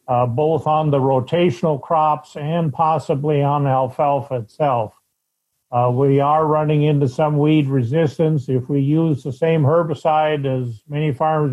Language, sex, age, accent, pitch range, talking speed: English, male, 50-69, American, 130-150 Hz, 150 wpm